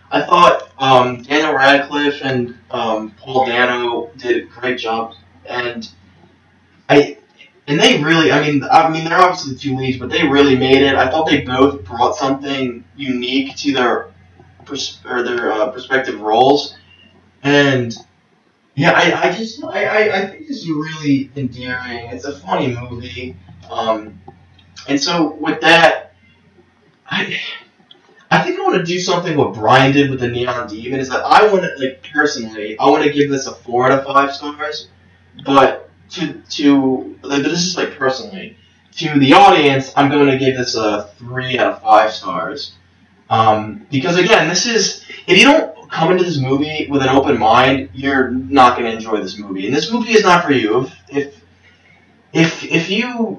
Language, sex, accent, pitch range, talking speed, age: English, male, American, 120-150 Hz, 180 wpm, 20-39